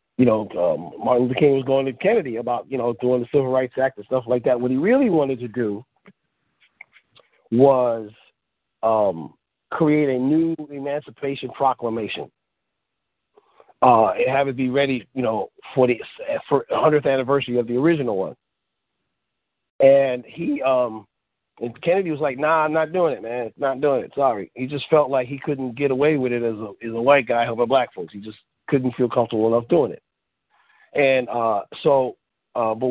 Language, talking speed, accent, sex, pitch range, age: English, 185 wpm, American, male, 125-145 Hz, 40-59